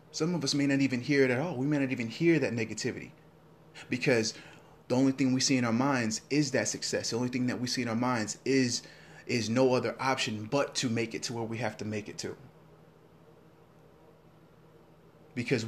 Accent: American